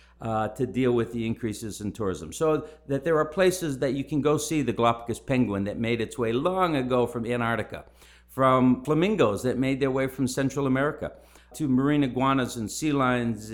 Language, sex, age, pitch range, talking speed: English, male, 50-69, 110-145 Hz, 195 wpm